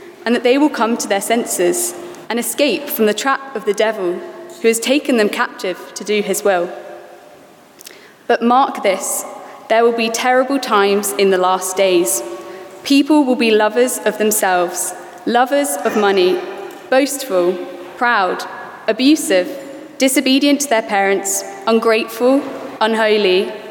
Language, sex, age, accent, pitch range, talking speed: English, female, 20-39, British, 195-270 Hz, 140 wpm